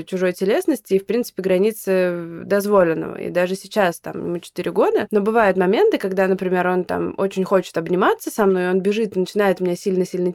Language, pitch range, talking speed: Russian, 180-225 Hz, 180 wpm